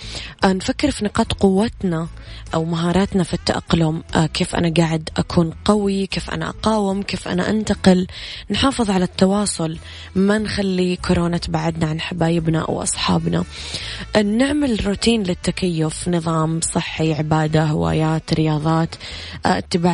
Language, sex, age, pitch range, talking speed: Arabic, female, 20-39, 160-190 Hz, 115 wpm